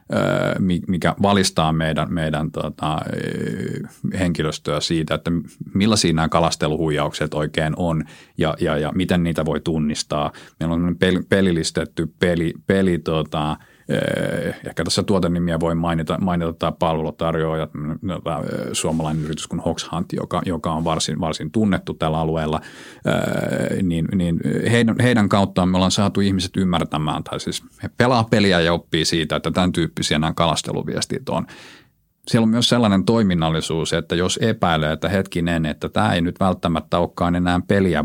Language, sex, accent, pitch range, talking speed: Finnish, male, native, 80-95 Hz, 145 wpm